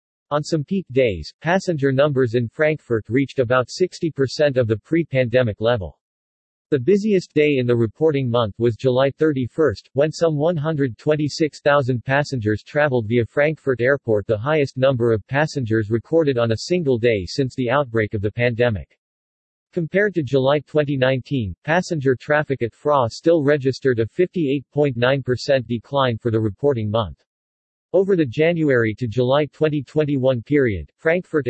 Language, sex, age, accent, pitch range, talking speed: English, male, 50-69, American, 115-150 Hz, 140 wpm